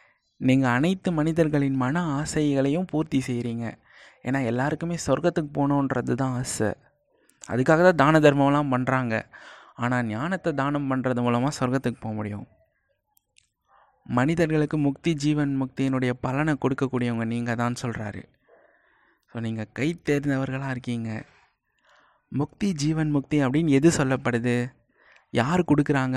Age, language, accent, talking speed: 20-39, Tamil, native, 110 wpm